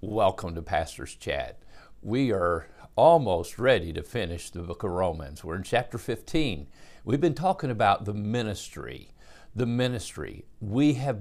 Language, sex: English, male